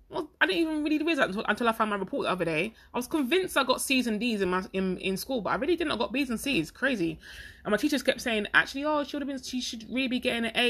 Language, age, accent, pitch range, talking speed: English, 20-39, British, 195-250 Hz, 310 wpm